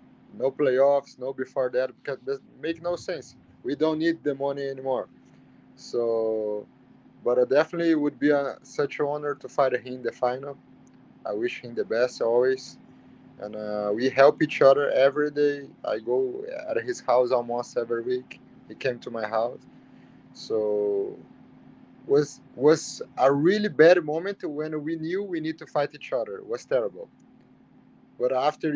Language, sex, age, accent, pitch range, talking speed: English, male, 20-39, Brazilian, 130-170 Hz, 170 wpm